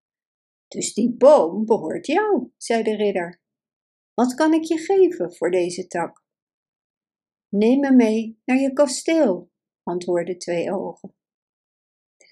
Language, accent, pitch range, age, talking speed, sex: Dutch, Dutch, 185-255 Hz, 60-79, 125 wpm, female